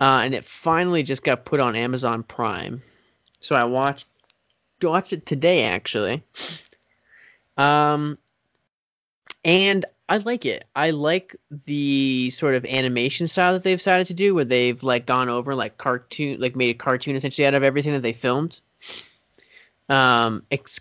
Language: English